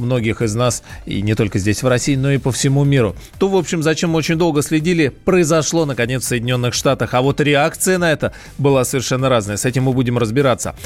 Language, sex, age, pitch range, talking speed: Russian, male, 20-39, 115-145 Hz, 220 wpm